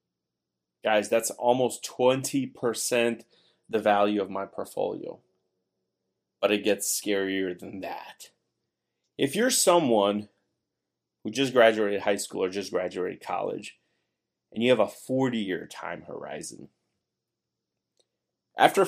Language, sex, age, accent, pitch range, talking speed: English, male, 30-49, American, 105-150 Hz, 110 wpm